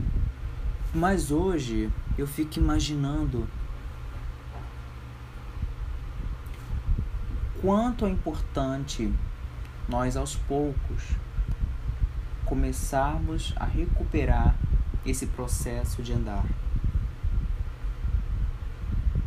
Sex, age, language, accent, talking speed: male, 20-39, Portuguese, Brazilian, 55 wpm